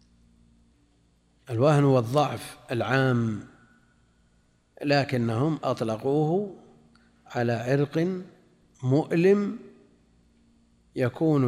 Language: Arabic